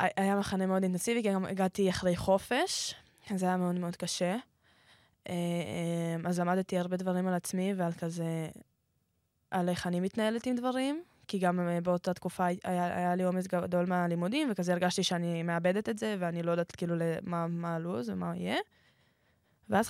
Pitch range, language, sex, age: 175-195 Hz, Hebrew, female, 20-39